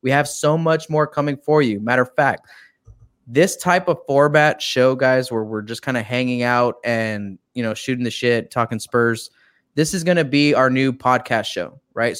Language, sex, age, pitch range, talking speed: English, male, 20-39, 115-135 Hz, 205 wpm